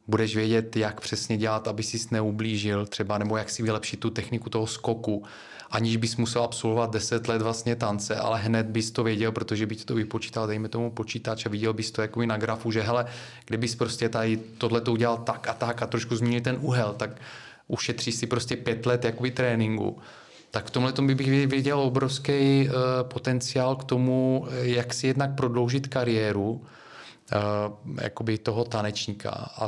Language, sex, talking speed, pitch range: Czech, male, 175 wpm, 110-125 Hz